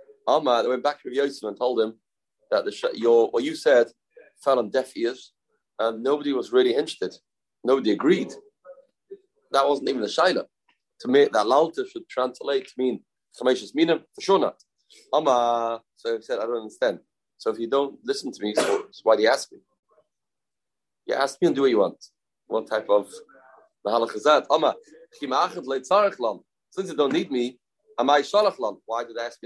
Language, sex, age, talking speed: English, male, 30-49, 170 wpm